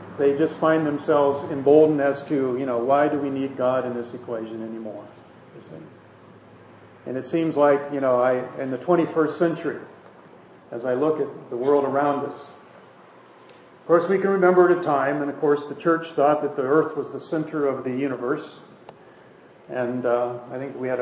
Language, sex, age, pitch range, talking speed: English, male, 50-69, 120-140 Hz, 185 wpm